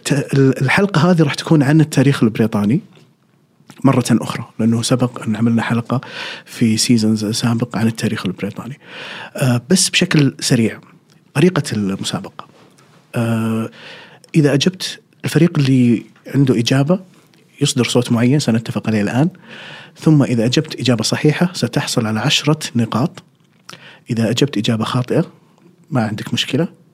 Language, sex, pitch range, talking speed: Arabic, male, 120-160 Hz, 120 wpm